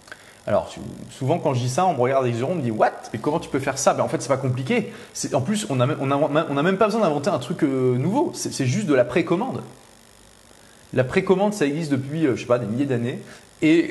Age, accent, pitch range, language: 30-49, French, 120-155 Hz, French